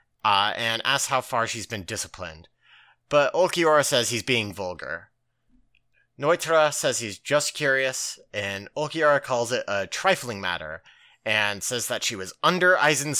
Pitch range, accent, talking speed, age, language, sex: 115-155 Hz, American, 145 wpm, 30-49, English, male